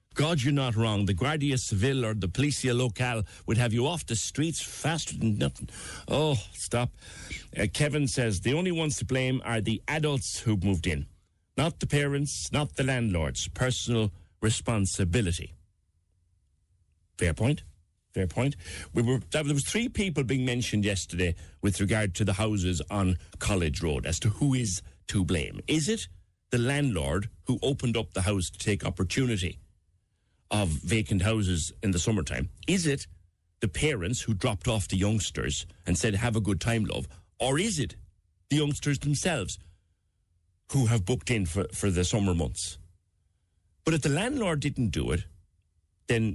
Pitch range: 90-125 Hz